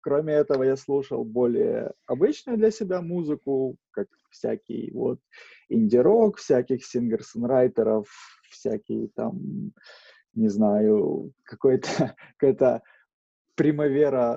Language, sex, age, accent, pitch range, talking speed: Ukrainian, male, 20-39, native, 120-160 Hz, 90 wpm